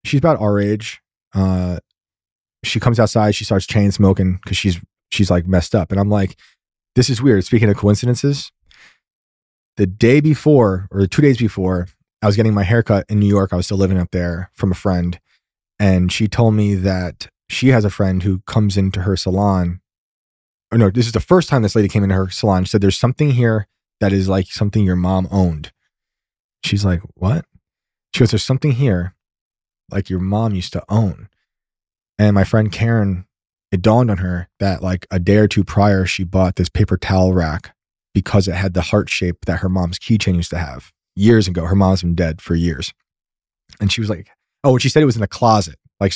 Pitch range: 90-110 Hz